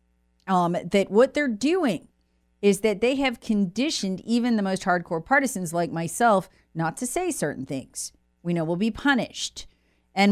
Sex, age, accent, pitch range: female, 40-59, American, 155-220 Hz